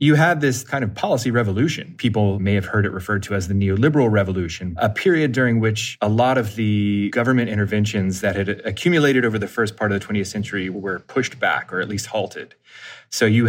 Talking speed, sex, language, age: 215 wpm, male, English, 30-49